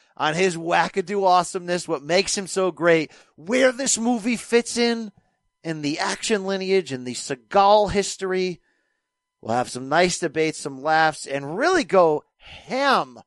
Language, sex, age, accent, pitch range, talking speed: English, male, 40-59, American, 140-205 Hz, 150 wpm